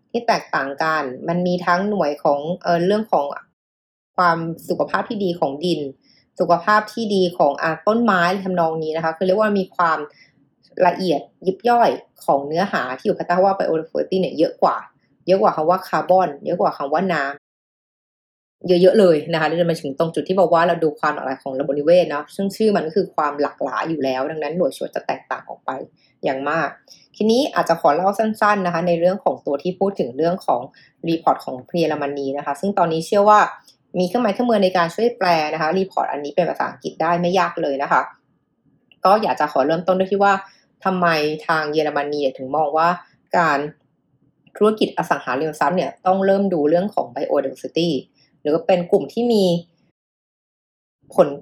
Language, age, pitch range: Thai, 20-39, 155-195 Hz